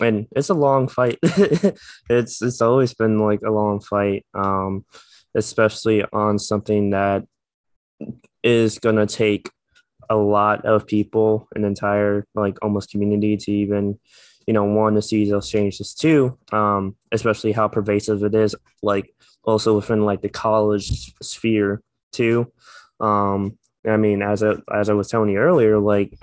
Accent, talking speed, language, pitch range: American, 150 wpm, English, 105-115 Hz